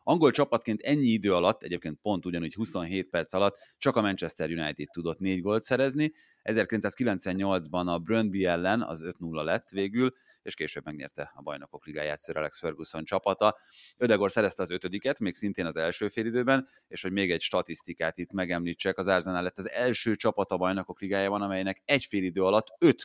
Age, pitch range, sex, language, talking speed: 30-49, 85-105 Hz, male, Hungarian, 170 wpm